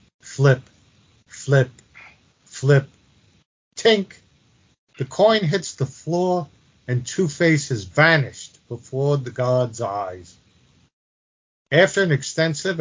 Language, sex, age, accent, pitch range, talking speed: English, male, 50-69, American, 120-150 Hz, 95 wpm